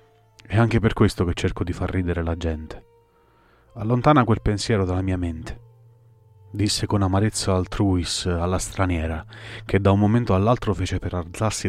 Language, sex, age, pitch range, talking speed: Italian, male, 30-49, 85-110 Hz, 160 wpm